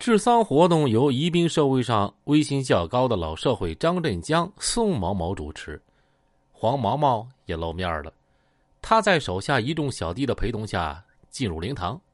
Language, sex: Chinese, male